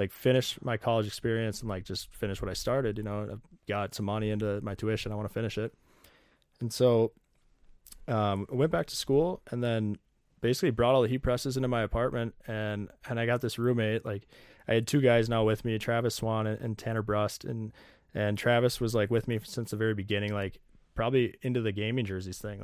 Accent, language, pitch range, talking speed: American, English, 100-115 Hz, 215 wpm